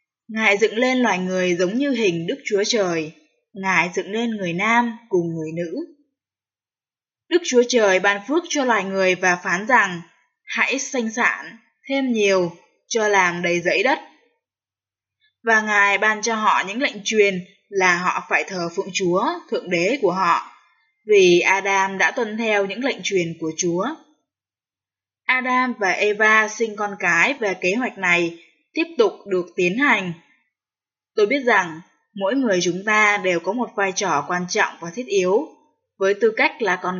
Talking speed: 170 wpm